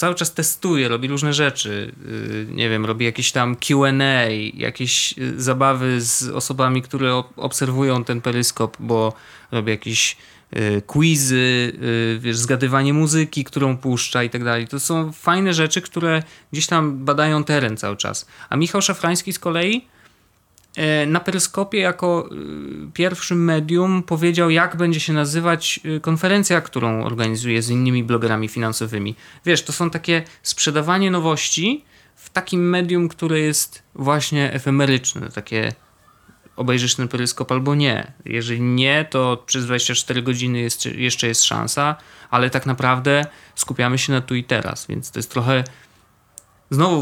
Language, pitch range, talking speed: Polish, 120-160 Hz, 135 wpm